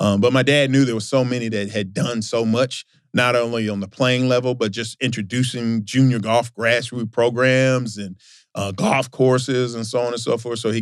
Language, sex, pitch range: English, male, 100-115 Hz